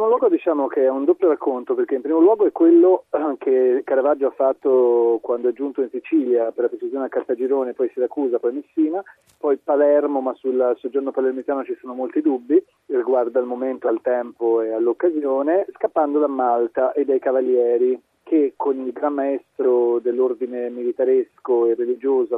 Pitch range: 125-195 Hz